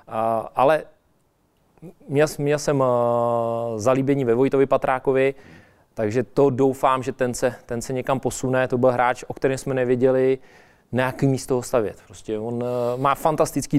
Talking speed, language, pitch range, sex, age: 140 wpm, Czech, 120-130 Hz, male, 20-39